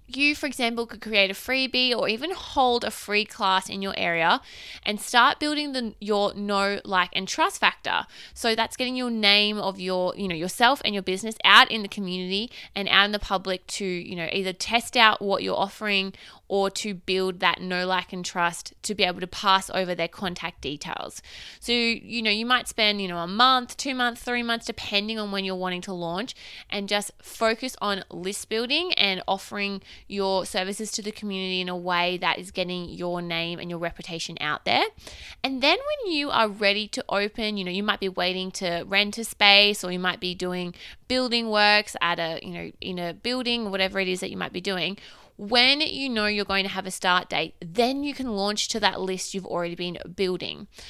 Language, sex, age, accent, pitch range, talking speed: English, female, 20-39, Australian, 185-230 Hz, 215 wpm